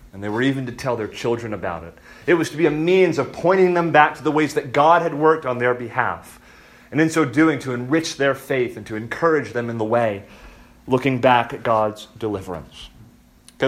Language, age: English, 30-49